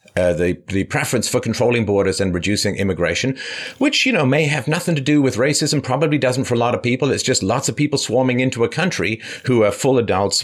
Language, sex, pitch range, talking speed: English, male, 100-140 Hz, 230 wpm